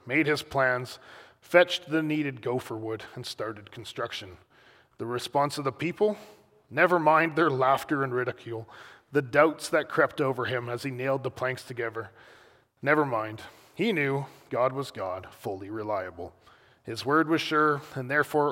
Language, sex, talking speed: English, male, 160 wpm